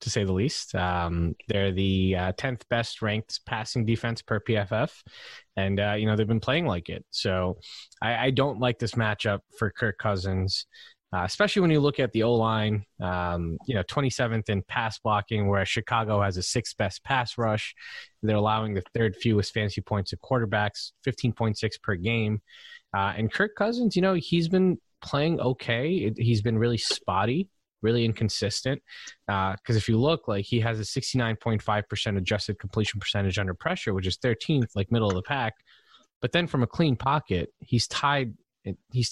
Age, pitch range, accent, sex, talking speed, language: 20-39, 100-125 Hz, American, male, 180 wpm, English